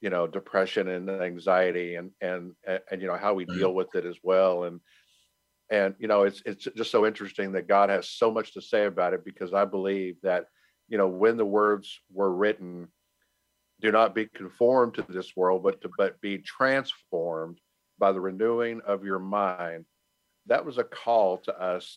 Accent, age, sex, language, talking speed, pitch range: American, 50-69, male, English, 195 wpm, 90-110 Hz